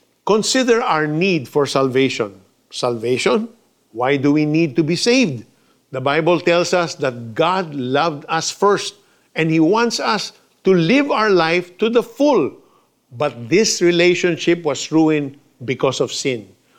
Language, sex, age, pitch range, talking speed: Filipino, male, 50-69, 135-185 Hz, 145 wpm